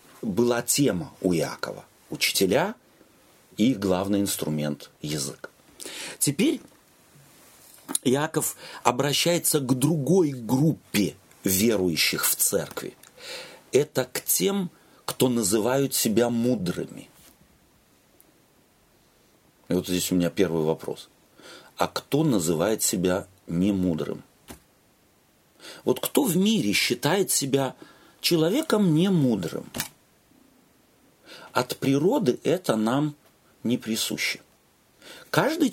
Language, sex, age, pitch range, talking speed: Russian, male, 40-59, 120-185 Hz, 95 wpm